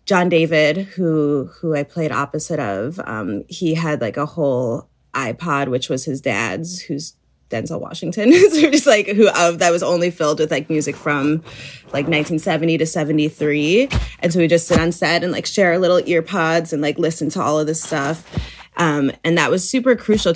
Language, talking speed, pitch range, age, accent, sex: English, 200 wpm, 145-170 Hz, 20-39, American, female